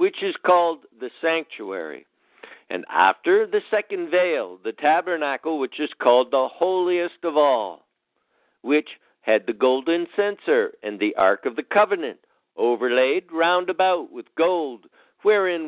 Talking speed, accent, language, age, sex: 140 wpm, American, English, 60-79, male